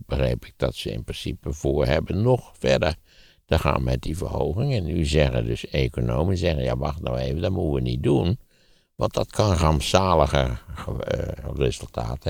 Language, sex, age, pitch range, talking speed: Dutch, male, 60-79, 65-95 Hz, 170 wpm